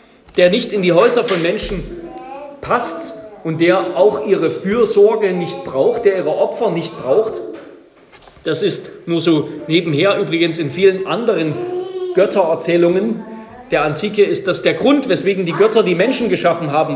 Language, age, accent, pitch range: German, 40-59, German, 150-215 Hz